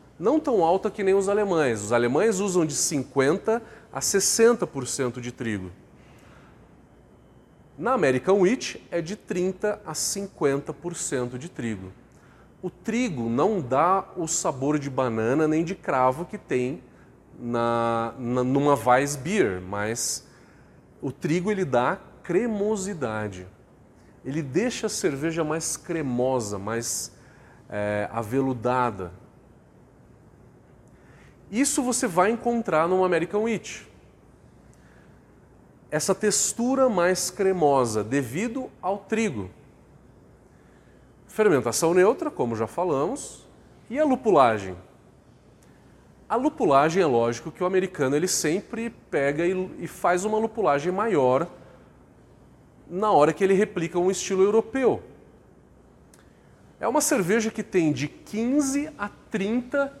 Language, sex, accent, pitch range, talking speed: Portuguese, male, Brazilian, 130-210 Hz, 110 wpm